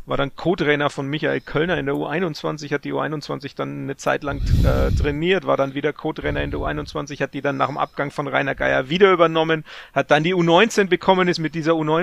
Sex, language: male, German